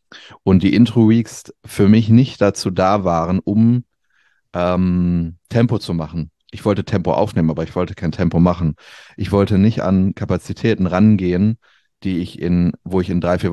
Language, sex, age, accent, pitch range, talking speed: German, male, 30-49, German, 90-110 Hz, 160 wpm